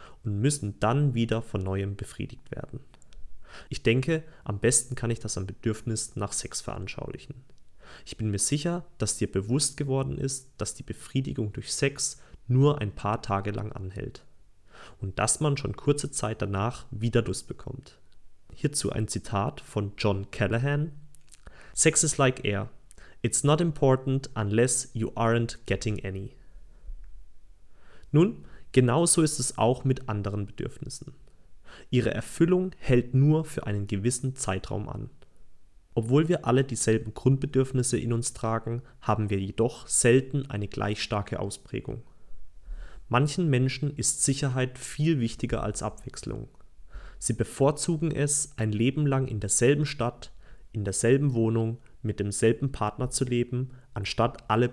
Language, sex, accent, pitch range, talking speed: German, male, German, 105-135 Hz, 140 wpm